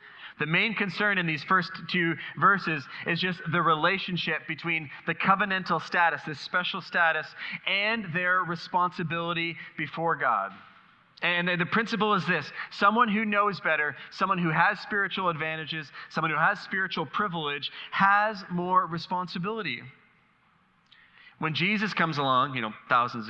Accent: American